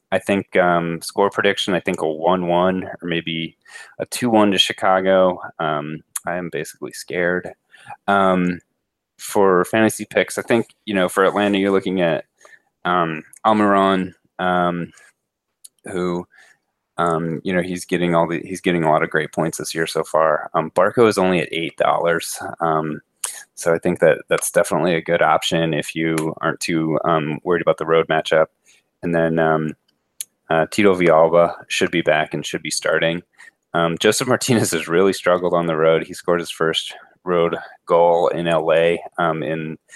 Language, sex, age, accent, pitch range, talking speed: English, male, 20-39, American, 80-95 Hz, 170 wpm